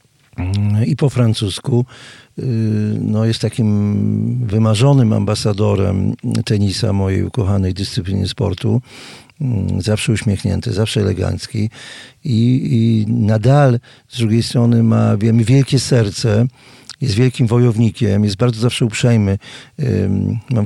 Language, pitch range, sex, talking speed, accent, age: Polish, 105-130 Hz, male, 100 wpm, native, 50-69